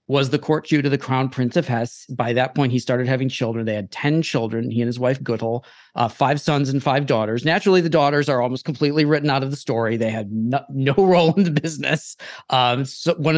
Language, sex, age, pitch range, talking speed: English, male, 40-59, 120-150 Hz, 240 wpm